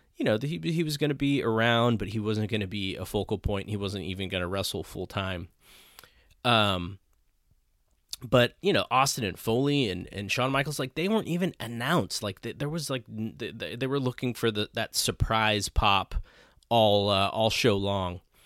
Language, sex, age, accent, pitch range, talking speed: English, male, 20-39, American, 100-130 Hz, 190 wpm